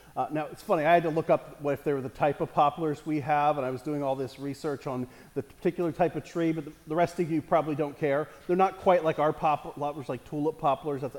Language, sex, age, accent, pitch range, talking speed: English, male, 40-59, American, 155-205 Hz, 275 wpm